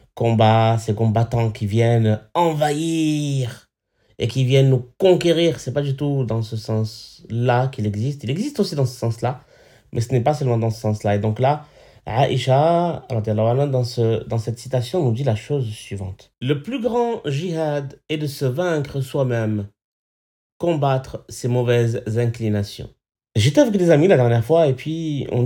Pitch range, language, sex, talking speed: 110-140 Hz, French, male, 165 wpm